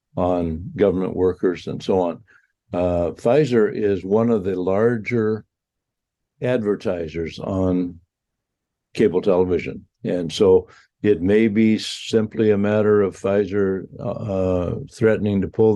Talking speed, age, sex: 120 wpm, 60-79, male